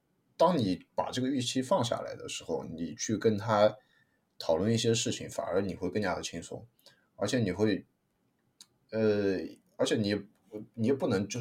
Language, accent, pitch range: Chinese, native, 95-130 Hz